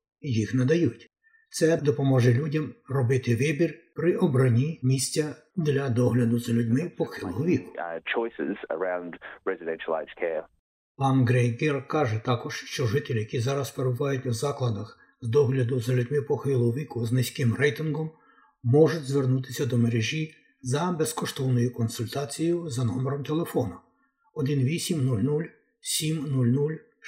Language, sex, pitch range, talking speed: Ukrainian, male, 125-150 Hz, 105 wpm